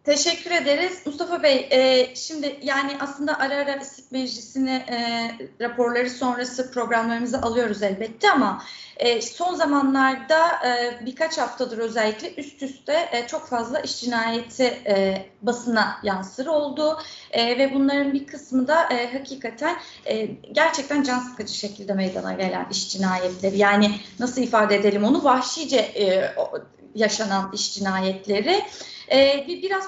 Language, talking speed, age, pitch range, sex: Turkish, 130 wpm, 30-49, 230-305 Hz, female